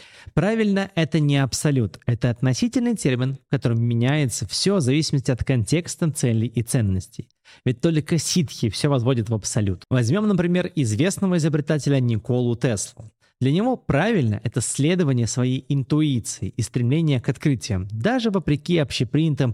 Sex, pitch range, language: male, 120-155 Hz, Russian